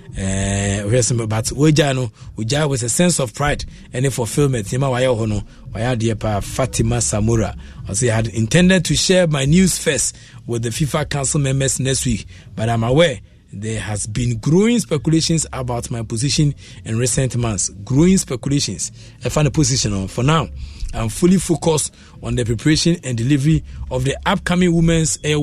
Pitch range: 115-155 Hz